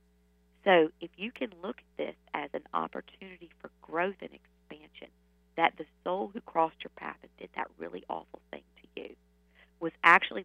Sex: female